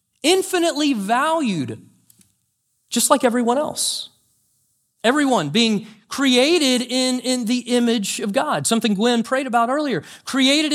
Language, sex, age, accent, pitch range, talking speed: English, male, 40-59, American, 160-245 Hz, 115 wpm